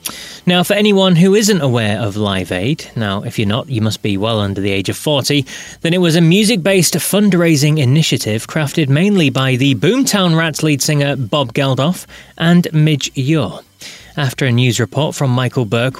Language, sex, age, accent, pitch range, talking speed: English, male, 30-49, British, 125-160 Hz, 185 wpm